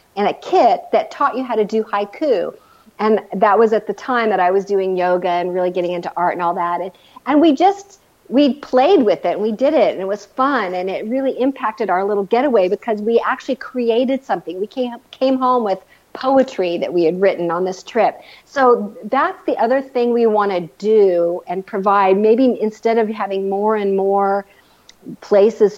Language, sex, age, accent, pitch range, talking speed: English, female, 50-69, American, 190-240 Hz, 205 wpm